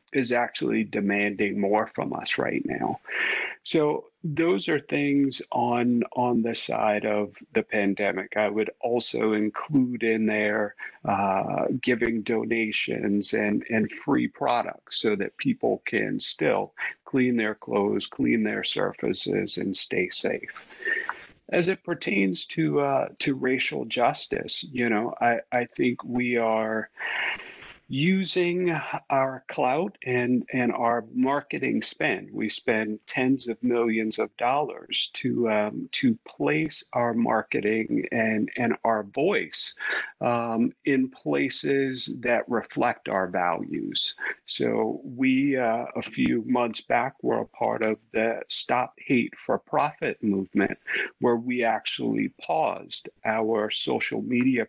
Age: 40-59